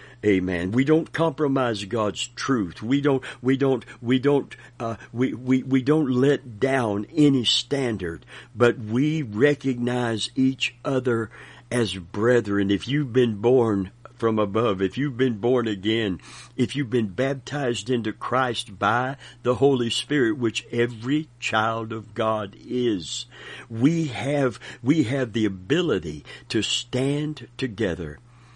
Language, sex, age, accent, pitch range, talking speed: English, male, 60-79, American, 110-130 Hz, 135 wpm